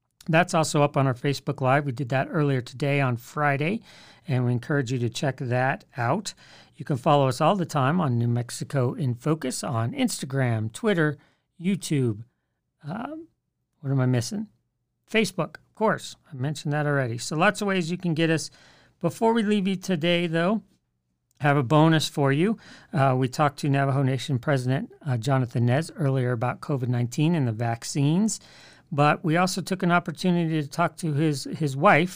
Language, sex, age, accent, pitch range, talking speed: English, male, 50-69, American, 130-165 Hz, 185 wpm